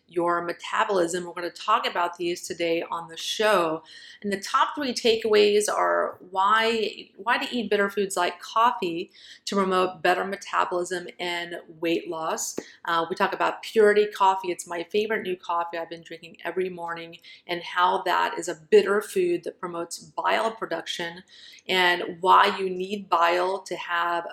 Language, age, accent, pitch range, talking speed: English, 30-49, American, 170-195 Hz, 165 wpm